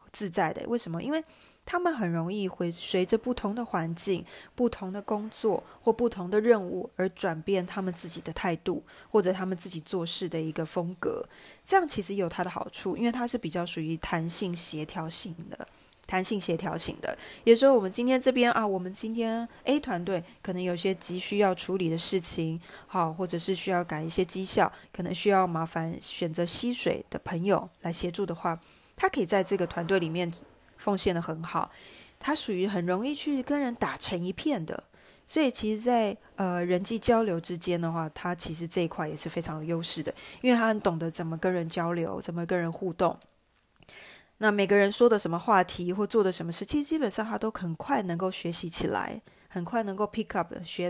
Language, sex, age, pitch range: Chinese, female, 20-39, 170-215 Hz